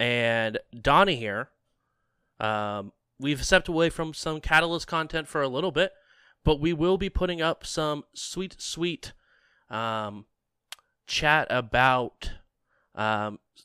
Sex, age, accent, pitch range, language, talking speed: male, 20-39, American, 110-155 Hz, English, 125 wpm